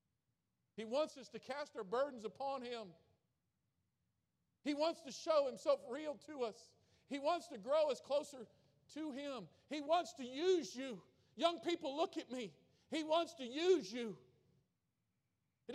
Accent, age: American, 50-69